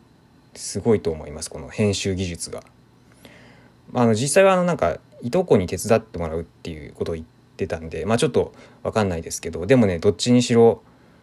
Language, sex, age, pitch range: Japanese, male, 20-39, 90-125 Hz